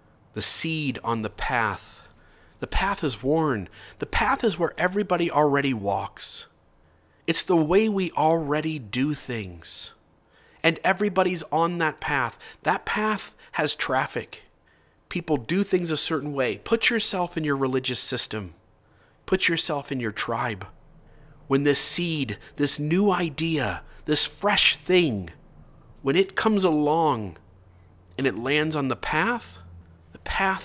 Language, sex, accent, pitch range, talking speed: English, male, American, 110-155 Hz, 135 wpm